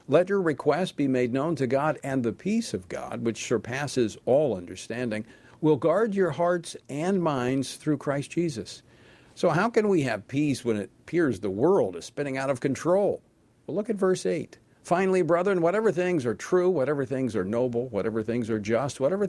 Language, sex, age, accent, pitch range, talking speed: English, male, 50-69, American, 125-180 Hz, 195 wpm